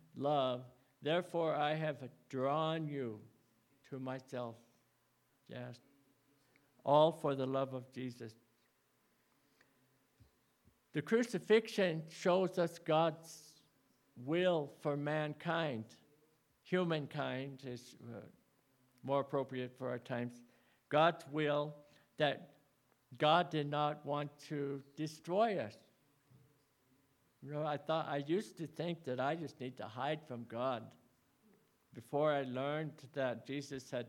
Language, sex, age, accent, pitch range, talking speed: English, male, 60-79, American, 130-155 Hz, 110 wpm